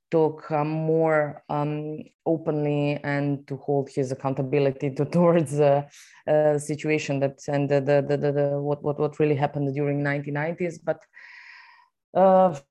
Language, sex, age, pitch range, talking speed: English, female, 20-39, 145-165 Hz, 150 wpm